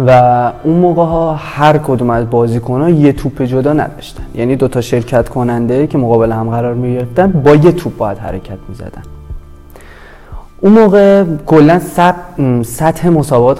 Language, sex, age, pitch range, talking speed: Persian, male, 20-39, 115-140 Hz, 155 wpm